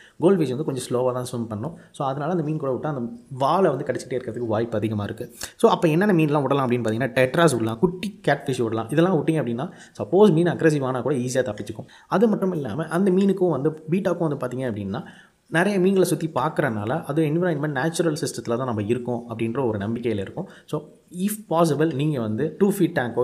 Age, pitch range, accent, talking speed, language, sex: 20-39, 110-160 Hz, native, 195 wpm, Tamil, male